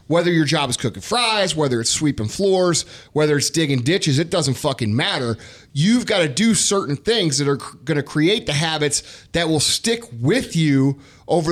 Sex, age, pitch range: male, 30-49, 145-185 Hz